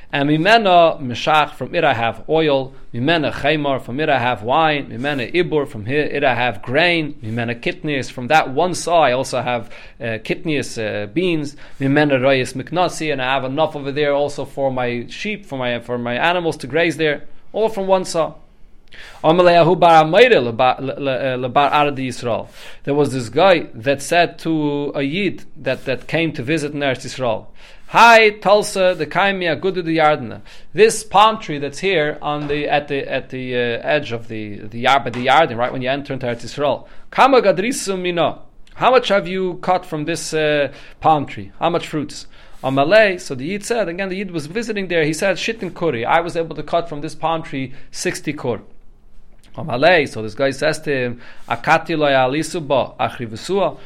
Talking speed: 170 wpm